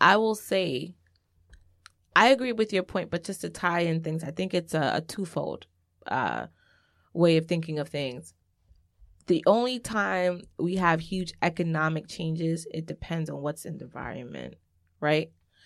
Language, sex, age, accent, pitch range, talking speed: English, female, 20-39, American, 135-170 Hz, 160 wpm